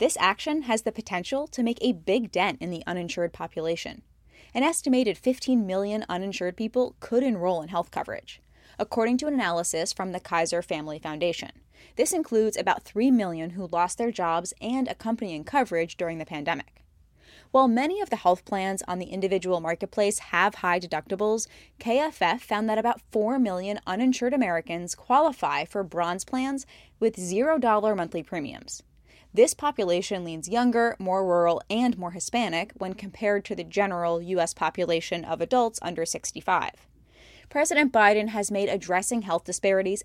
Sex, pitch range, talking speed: female, 180-240 Hz, 155 wpm